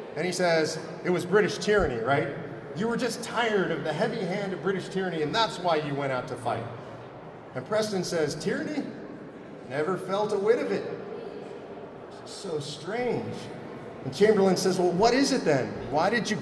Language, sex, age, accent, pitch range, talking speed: English, male, 40-59, American, 155-205 Hz, 185 wpm